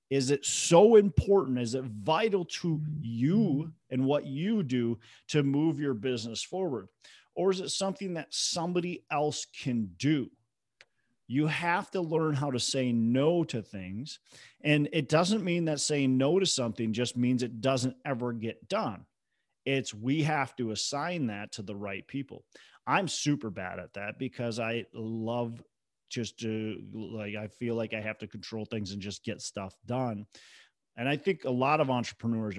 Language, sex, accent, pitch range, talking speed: English, male, American, 110-150 Hz, 175 wpm